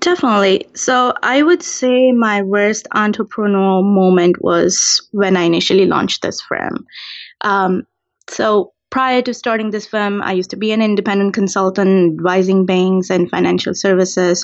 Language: English